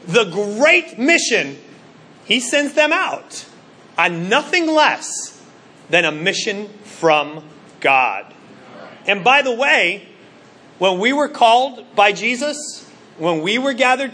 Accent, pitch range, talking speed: American, 185-255 Hz, 125 wpm